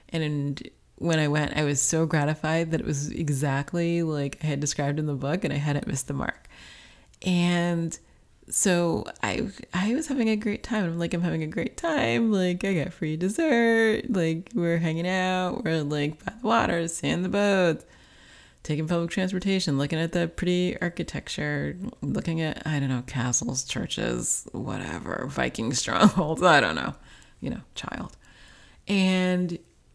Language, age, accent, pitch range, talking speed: English, 30-49, American, 150-185 Hz, 170 wpm